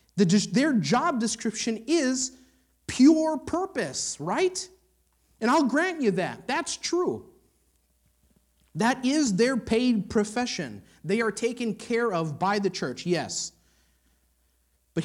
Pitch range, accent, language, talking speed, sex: 145-225 Hz, American, English, 115 wpm, male